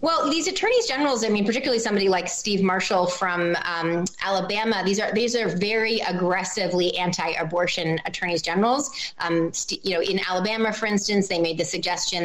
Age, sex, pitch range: 30-49, female, 175-210 Hz